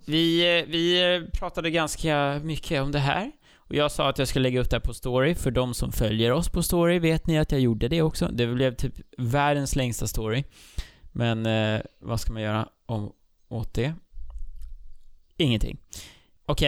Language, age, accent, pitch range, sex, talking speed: Swedish, 20-39, Norwegian, 115-160 Hz, male, 180 wpm